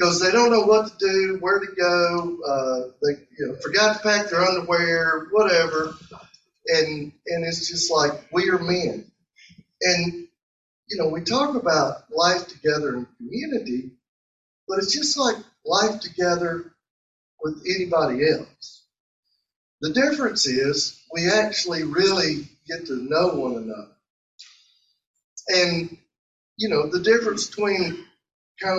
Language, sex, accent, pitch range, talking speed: English, male, American, 160-210 Hz, 130 wpm